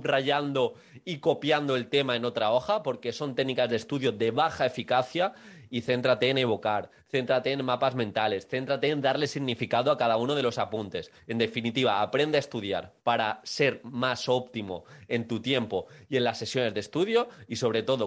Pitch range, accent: 120-165 Hz, Spanish